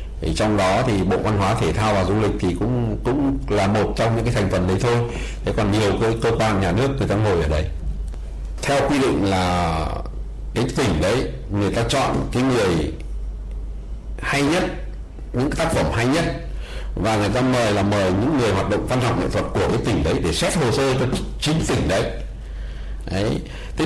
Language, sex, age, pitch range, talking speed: Vietnamese, male, 60-79, 95-135 Hz, 210 wpm